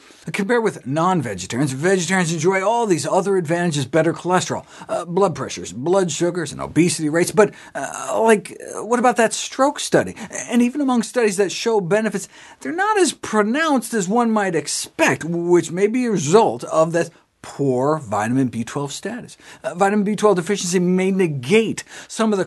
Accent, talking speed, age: American, 170 wpm, 50-69